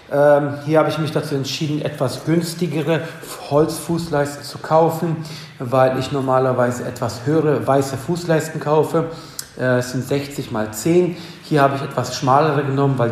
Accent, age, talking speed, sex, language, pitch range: German, 50-69, 150 wpm, male, German, 125-155 Hz